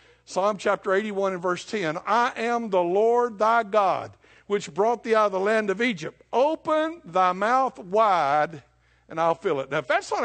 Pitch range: 175-225 Hz